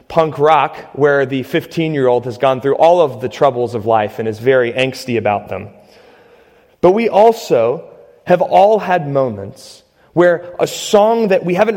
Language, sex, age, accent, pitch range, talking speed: English, male, 30-49, American, 130-180 Hz, 170 wpm